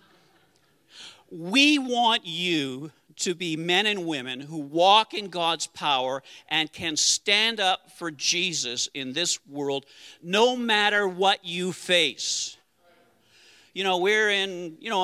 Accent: American